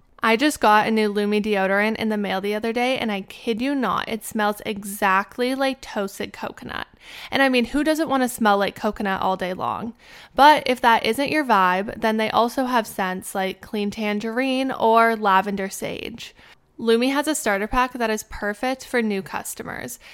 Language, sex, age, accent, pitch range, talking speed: English, female, 20-39, American, 205-245 Hz, 195 wpm